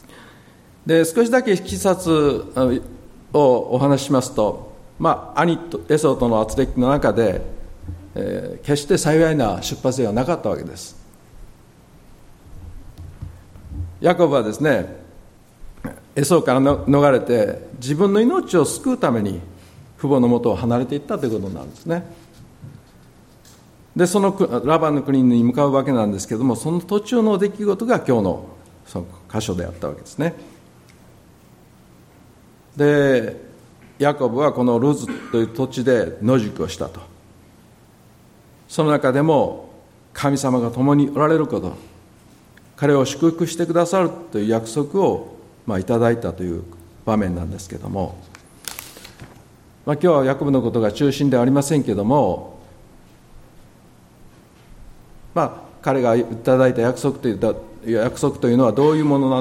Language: Japanese